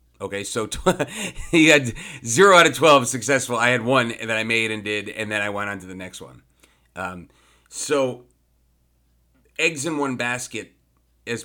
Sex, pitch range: male, 105-135 Hz